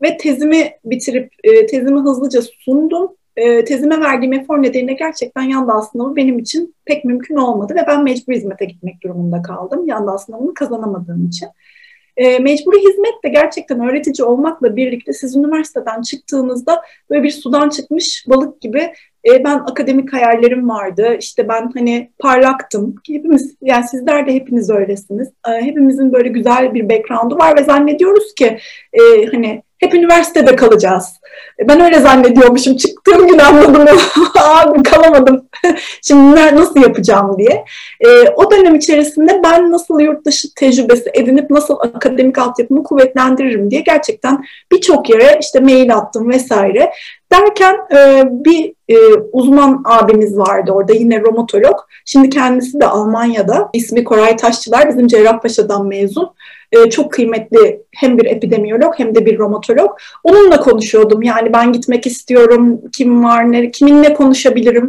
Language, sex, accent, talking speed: Turkish, female, native, 130 wpm